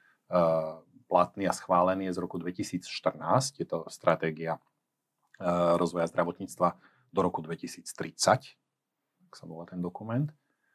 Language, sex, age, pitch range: Slovak, male, 40-59, 85-110 Hz